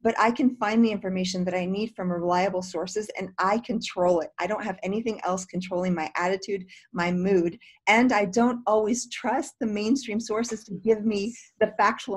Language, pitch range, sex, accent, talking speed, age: English, 185-220 Hz, female, American, 190 wpm, 40-59